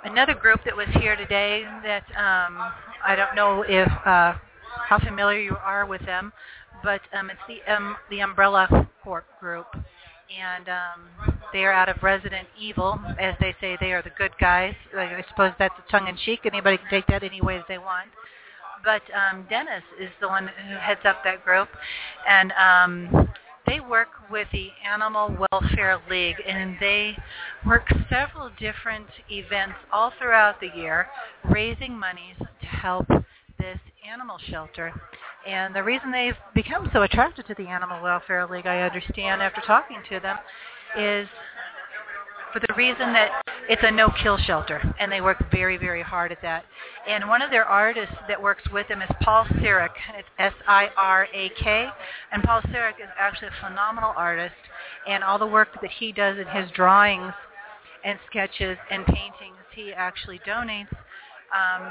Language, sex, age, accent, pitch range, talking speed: English, female, 40-59, American, 185-210 Hz, 165 wpm